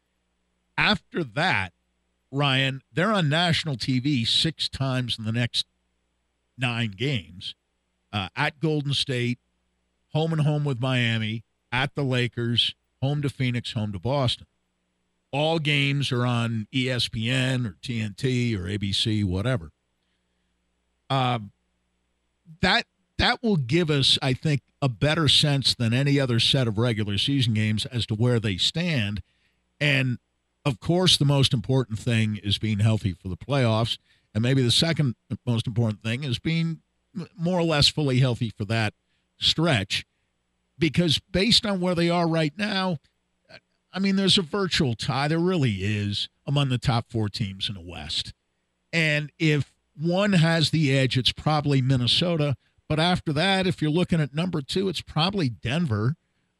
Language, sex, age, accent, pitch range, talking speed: English, male, 50-69, American, 105-150 Hz, 150 wpm